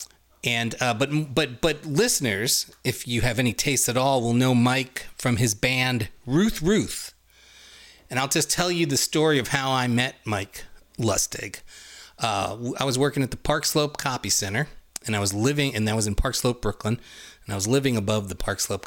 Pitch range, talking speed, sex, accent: 105-145 Hz, 200 wpm, male, American